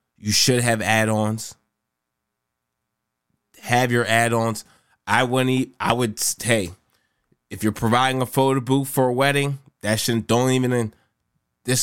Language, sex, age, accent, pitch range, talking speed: English, male, 20-39, American, 100-125 Hz, 135 wpm